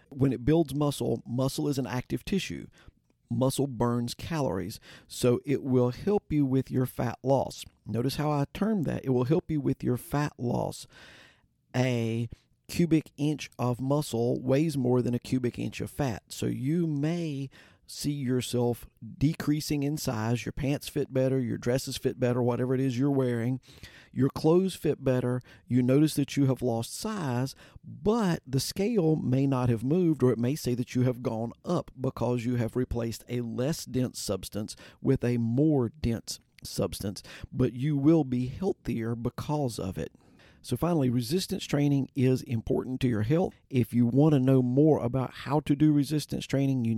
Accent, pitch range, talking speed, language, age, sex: American, 120-145 Hz, 175 wpm, English, 50-69, male